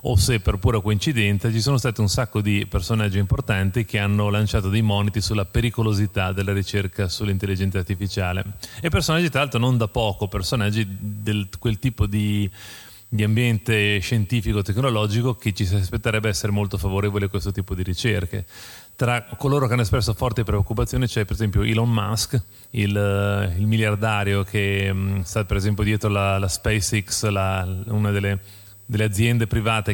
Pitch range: 100-110 Hz